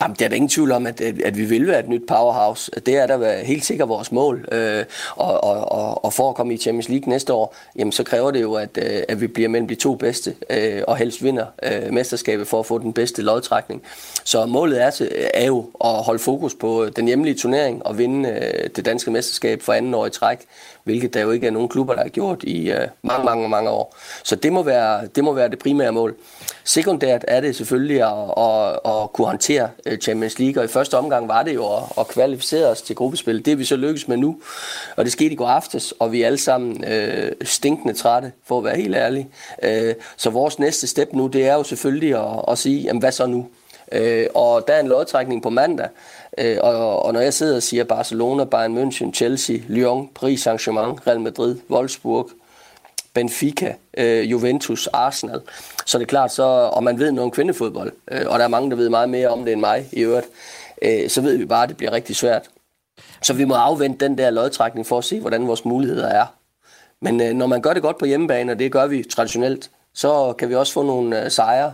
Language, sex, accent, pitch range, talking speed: Danish, male, native, 115-140 Hz, 230 wpm